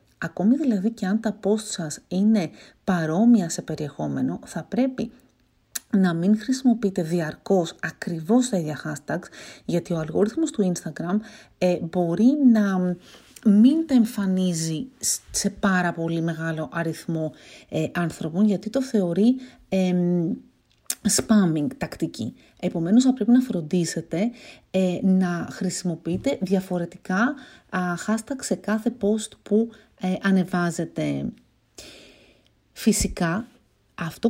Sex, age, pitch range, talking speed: female, 40-59, 170-225 Hz, 110 wpm